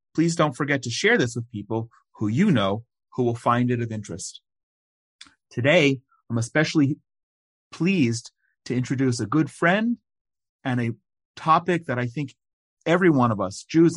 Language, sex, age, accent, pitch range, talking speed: English, male, 40-59, American, 115-150 Hz, 160 wpm